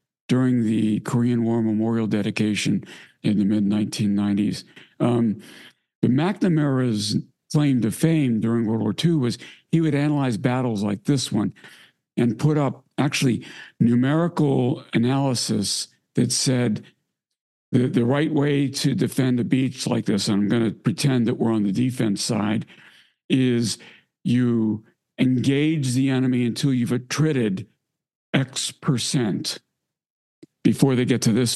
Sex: male